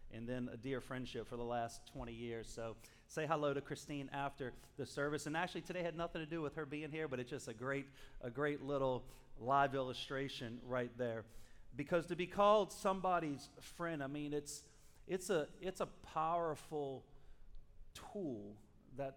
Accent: American